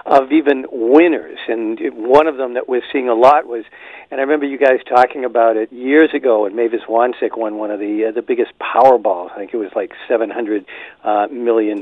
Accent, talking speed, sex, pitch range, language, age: American, 215 wpm, male, 120-175 Hz, English, 50-69